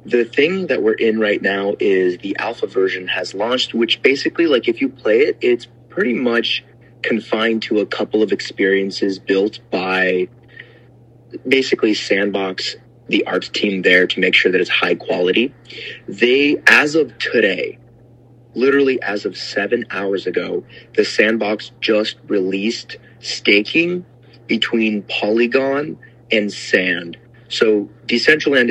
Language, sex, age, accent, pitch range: Chinese, male, 30-49, American, 100-120 Hz